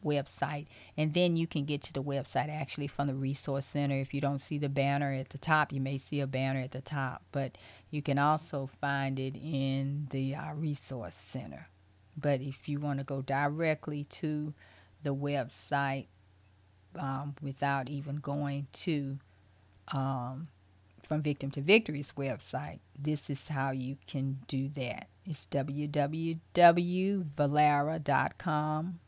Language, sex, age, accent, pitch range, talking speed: English, female, 40-59, American, 135-150 Hz, 150 wpm